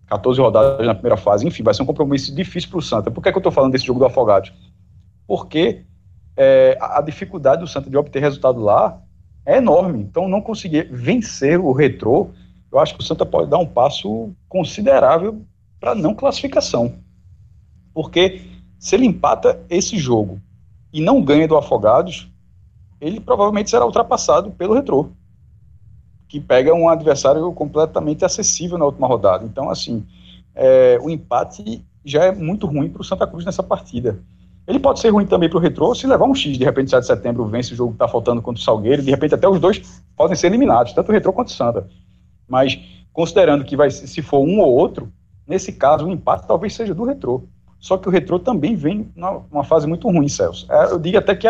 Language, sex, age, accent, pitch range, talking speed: Portuguese, male, 50-69, Brazilian, 110-185 Hz, 195 wpm